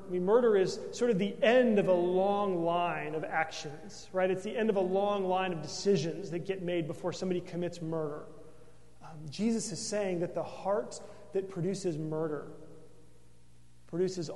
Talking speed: 175 wpm